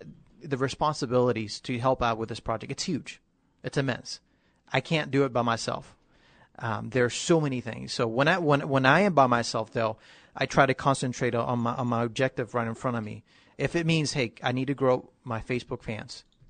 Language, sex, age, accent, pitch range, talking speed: English, male, 30-49, American, 115-135 Hz, 215 wpm